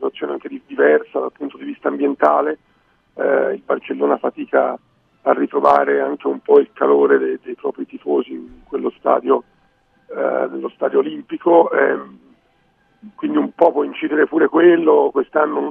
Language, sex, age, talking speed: Italian, male, 50-69, 150 wpm